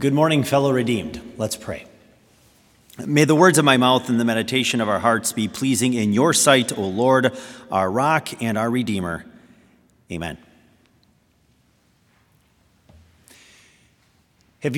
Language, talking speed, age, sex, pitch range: English, 130 wpm, 30-49, male, 115-155 Hz